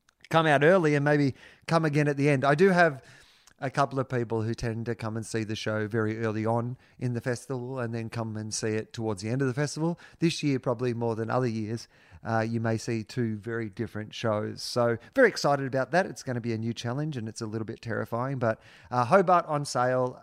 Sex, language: male, English